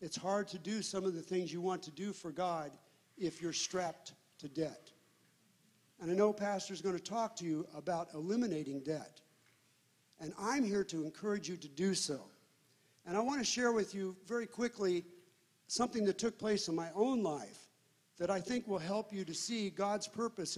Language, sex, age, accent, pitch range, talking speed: English, male, 50-69, American, 165-210 Hz, 195 wpm